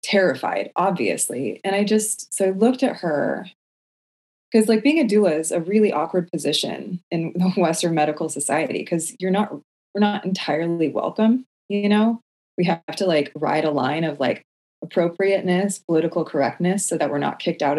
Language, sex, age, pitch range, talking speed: English, female, 20-39, 160-210 Hz, 175 wpm